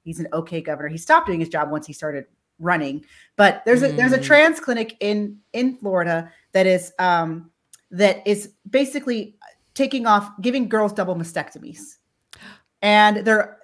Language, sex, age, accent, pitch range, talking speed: English, female, 30-49, American, 180-240 Hz, 165 wpm